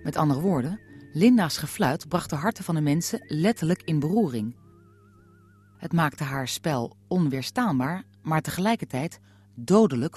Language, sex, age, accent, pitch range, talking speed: Dutch, female, 40-59, Dutch, 100-165 Hz, 130 wpm